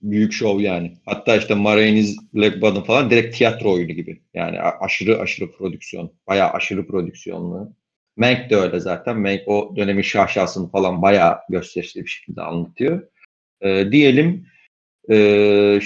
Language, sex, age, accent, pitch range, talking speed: Turkish, male, 40-59, native, 105-145 Hz, 140 wpm